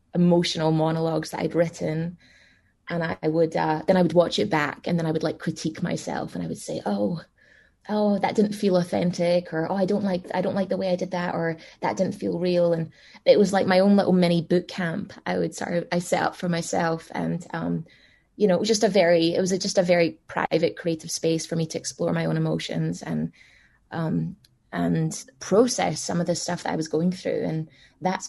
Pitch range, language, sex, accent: 160-185 Hz, English, female, British